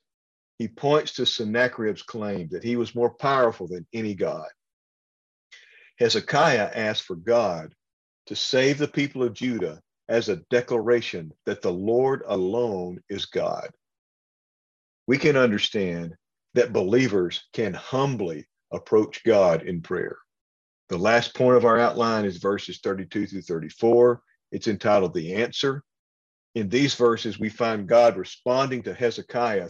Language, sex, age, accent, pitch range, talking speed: English, male, 50-69, American, 95-125 Hz, 135 wpm